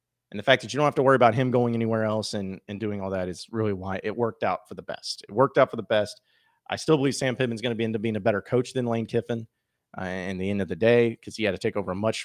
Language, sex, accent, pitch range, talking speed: English, male, American, 110-135 Hz, 330 wpm